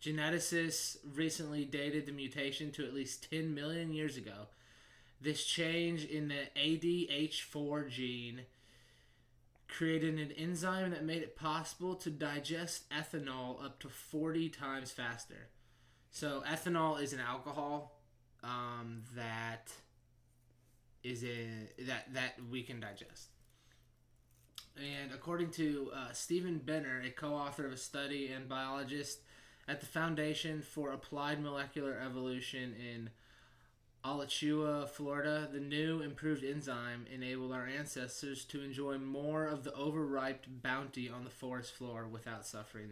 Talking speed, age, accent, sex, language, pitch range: 125 wpm, 20-39, American, male, English, 120-150 Hz